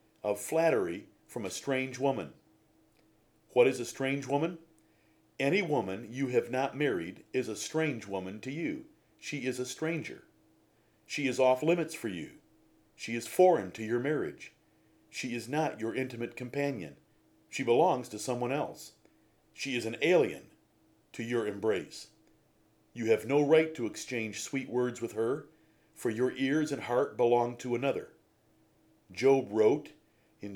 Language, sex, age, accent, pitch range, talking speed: English, male, 50-69, American, 110-140 Hz, 155 wpm